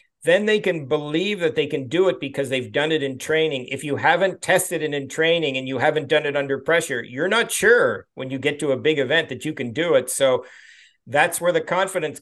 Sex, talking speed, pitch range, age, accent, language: male, 240 wpm, 130-175 Hz, 50-69, American, English